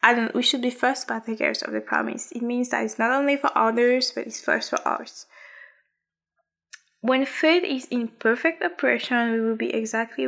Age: 10-29